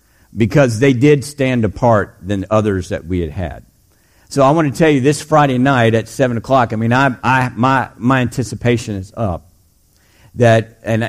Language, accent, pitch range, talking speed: English, American, 105-135 Hz, 185 wpm